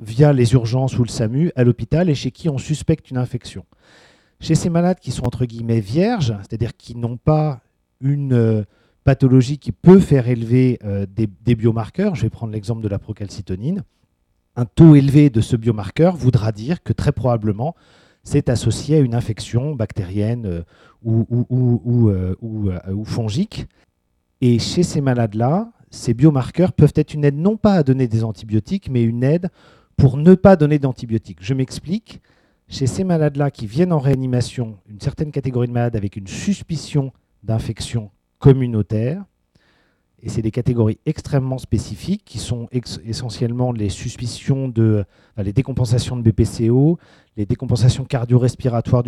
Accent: French